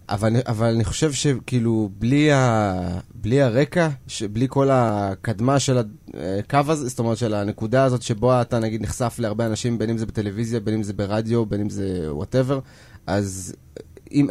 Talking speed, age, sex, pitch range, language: 170 wpm, 20-39, male, 105-130 Hz, Hebrew